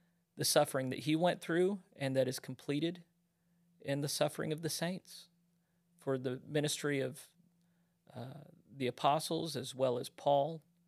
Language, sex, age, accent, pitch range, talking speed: English, male, 40-59, American, 135-170 Hz, 150 wpm